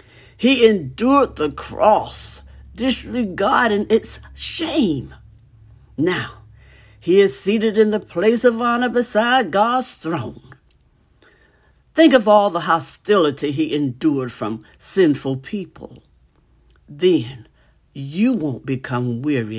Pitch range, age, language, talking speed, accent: 125-180 Hz, 60-79, English, 105 wpm, American